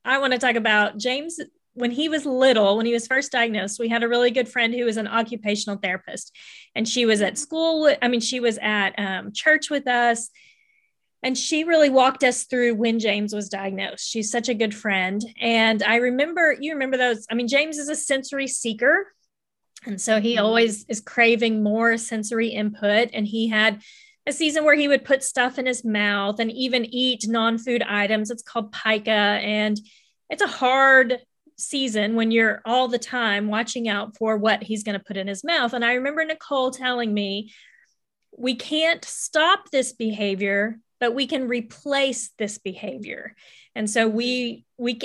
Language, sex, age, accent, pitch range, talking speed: English, female, 30-49, American, 215-265 Hz, 185 wpm